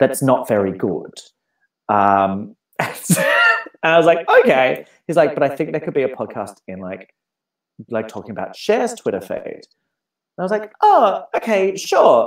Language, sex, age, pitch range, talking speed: English, male, 30-49, 110-150 Hz, 170 wpm